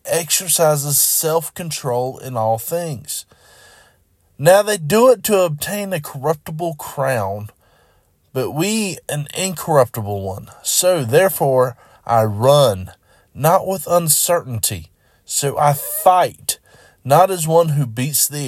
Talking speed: 115 wpm